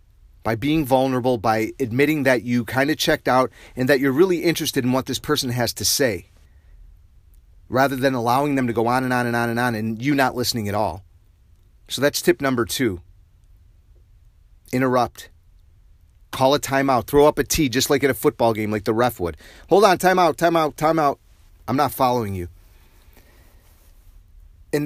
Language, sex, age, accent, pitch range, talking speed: English, male, 30-49, American, 90-140 Hz, 180 wpm